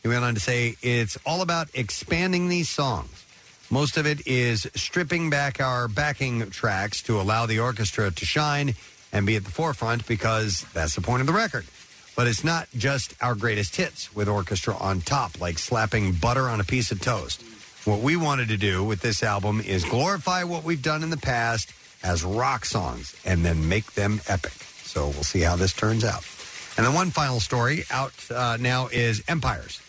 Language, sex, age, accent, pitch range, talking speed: English, male, 50-69, American, 95-125 Hz, 195 wpm